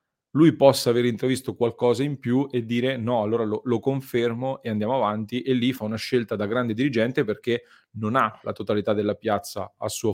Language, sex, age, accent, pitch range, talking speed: Italian, male, 30-49, native, 105-120 Hz, 200 wpm